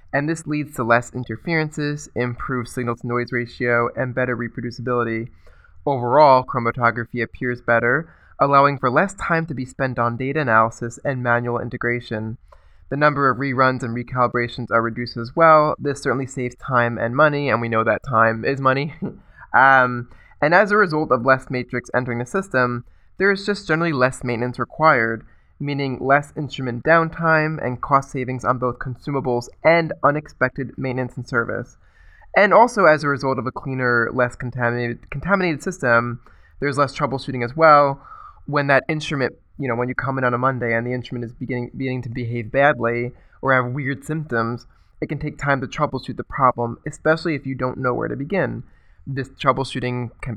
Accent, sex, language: American, male, English